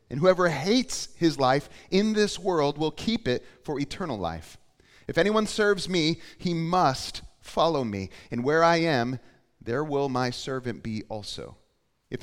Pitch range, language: 115-165 Hz, English